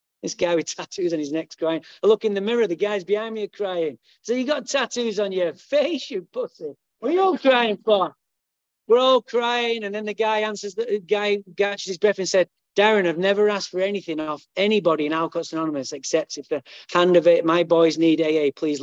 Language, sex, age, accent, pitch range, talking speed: English, male, 40-59, British, 150-200 Hz, 225 wpm